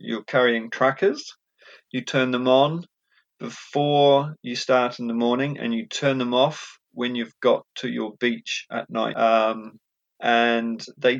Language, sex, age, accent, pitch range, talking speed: English, male, 30-49, British, 120-140 Hz, 155 wpm